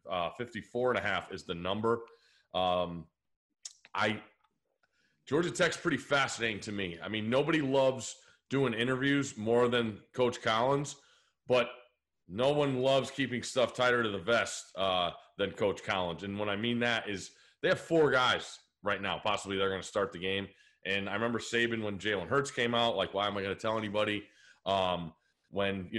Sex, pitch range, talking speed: male, 100-125 Hz, 180 wpm